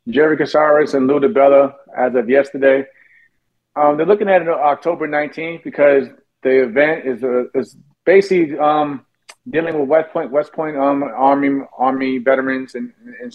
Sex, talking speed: male, 160 wpm